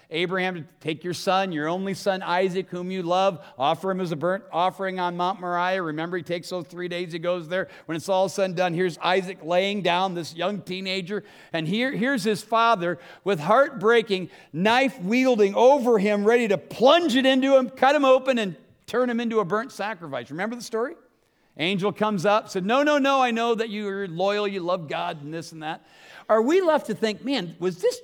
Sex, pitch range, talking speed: male, 165-210 Hz, 210 wpm